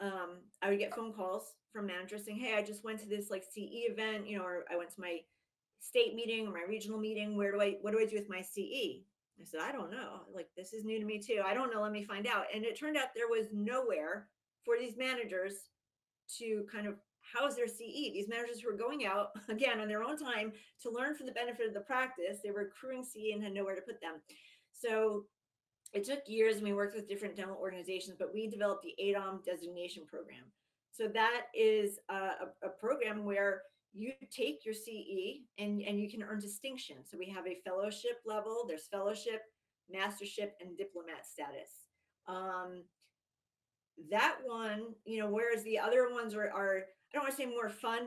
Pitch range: 195-230 Hz